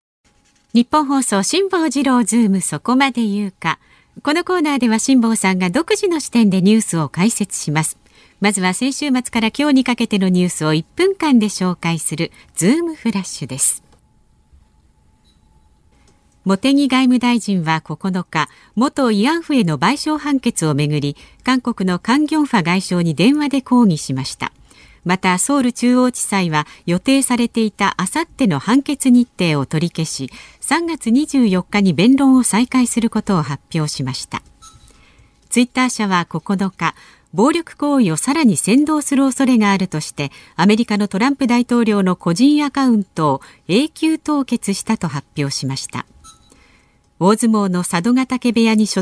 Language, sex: Japanese, female